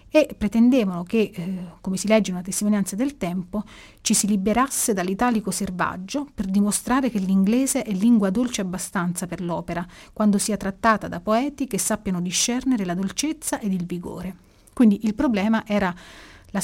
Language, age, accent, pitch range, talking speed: Italian, 30-49, native, 185-235 Hz, 160 wpm